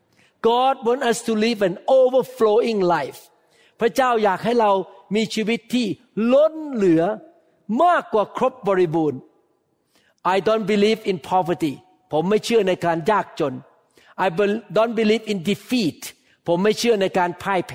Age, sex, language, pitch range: 60-79, male, Thai, 180-230 Hz